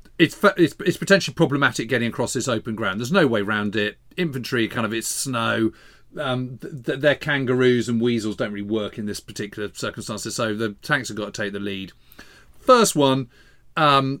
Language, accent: English, British